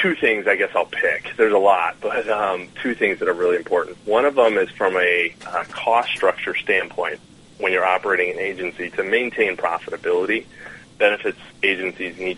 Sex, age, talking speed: male, 30-49, 185 wpm